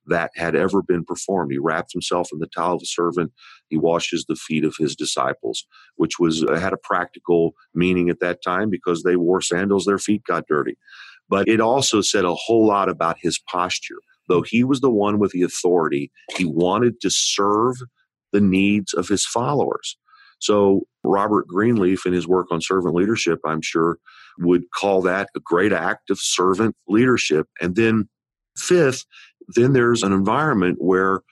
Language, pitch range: English, 90-120 Hz